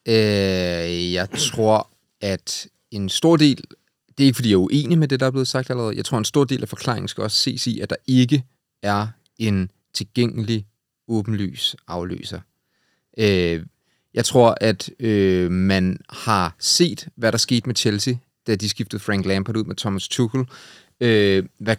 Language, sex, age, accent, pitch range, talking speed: Danish, male, 30-49, native, 100-130 Hz, 165 wpm